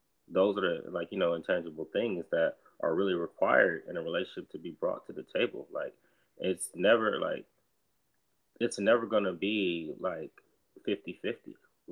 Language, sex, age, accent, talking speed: English, male, 20-39, American, 160 wpm